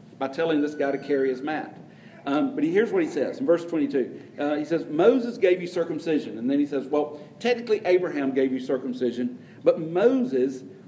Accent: American